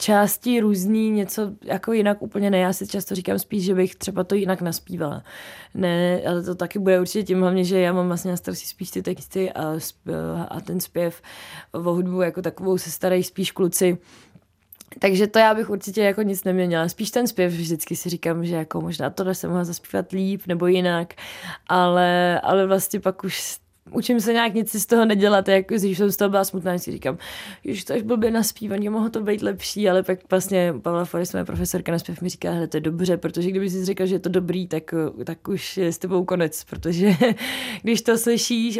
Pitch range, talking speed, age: 175-200 Hz, 205 wpm, 20-39